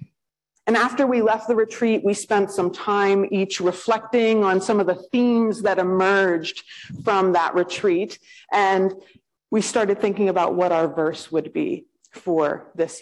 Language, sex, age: English, female, 30-49